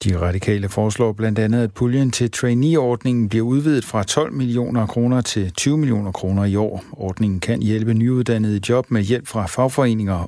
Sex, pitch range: male, 100-120 Hz